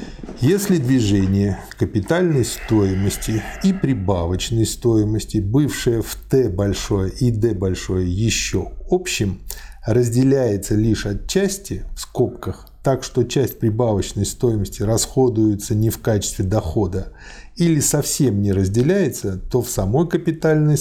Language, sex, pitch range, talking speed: Russian, male, 100-130 Hz, 115 wpm